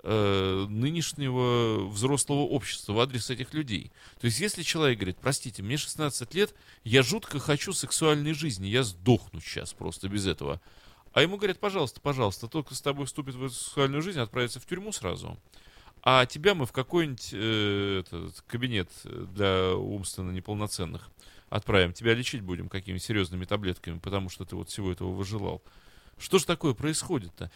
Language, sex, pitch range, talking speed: Russian, male, 100-145 Hz, 160 wpm